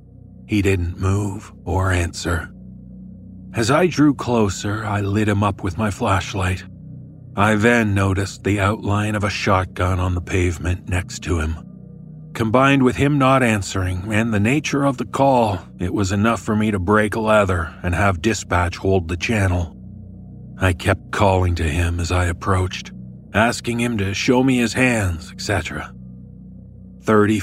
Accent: American